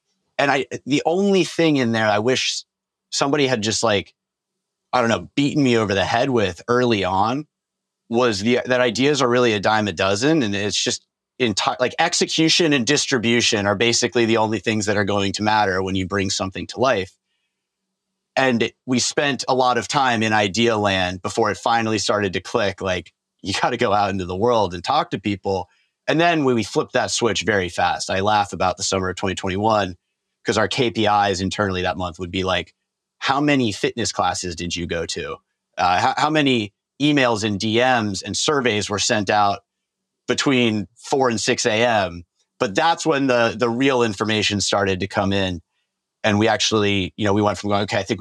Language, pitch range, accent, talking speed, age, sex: English, 100-125 Hz, American, 200 wpm, 30-49, male